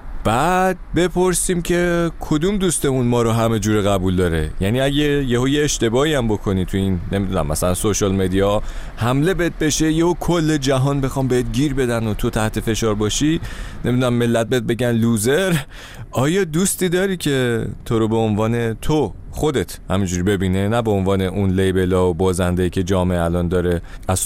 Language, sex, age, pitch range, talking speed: Persian, male, 30-49, 95-140 Hz, 165 wpm